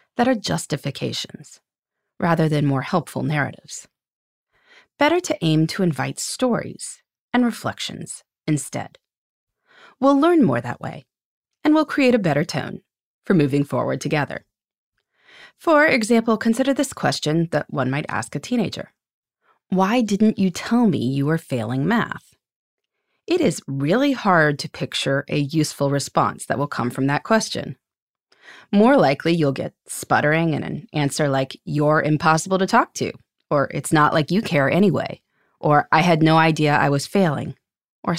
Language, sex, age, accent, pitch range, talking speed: English, female, 30-49, American, 145-230 Hz, 150 wpm